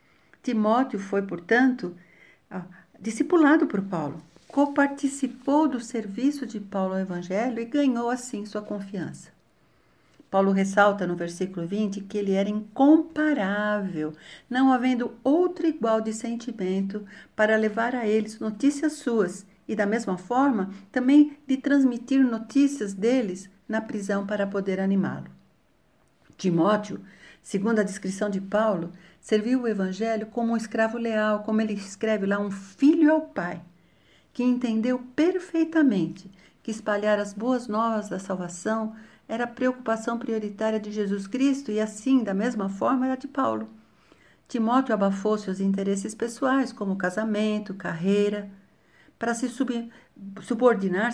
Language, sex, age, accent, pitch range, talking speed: Portuguese, female, 60-79, Brazilian, 195-250 Hz, 130 wpm